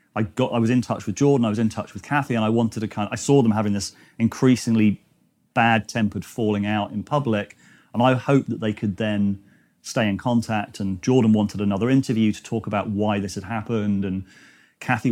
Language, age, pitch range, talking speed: English, 30-49, 100-115 Hz, 220 wpm